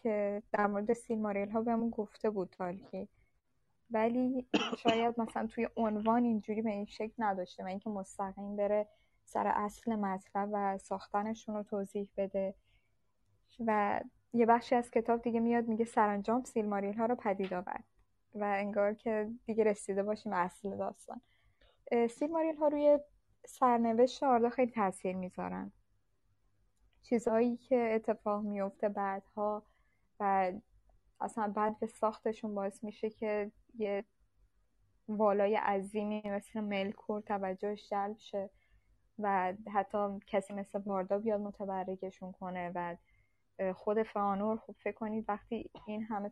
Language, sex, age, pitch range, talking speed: Persian, female, 10-29, 195-225 Hz, 130 wpm